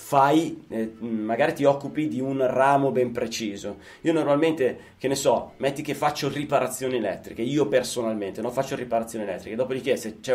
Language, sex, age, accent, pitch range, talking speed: Italian, male, 20-39, native, 120-145 Hz, 170 wpm